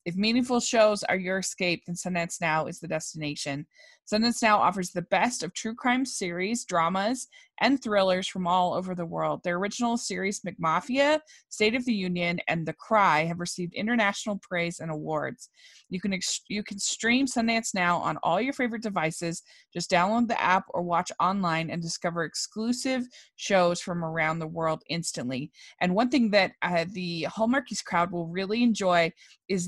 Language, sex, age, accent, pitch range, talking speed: English, female, 20-39, American, 165-210 Hz, 175 wpm